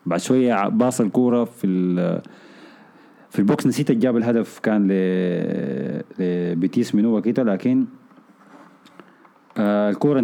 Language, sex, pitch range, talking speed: Arabic, male, 100-130 Hz, 95 wpm